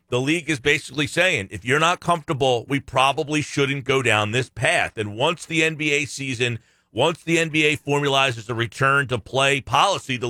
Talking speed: 180 wpm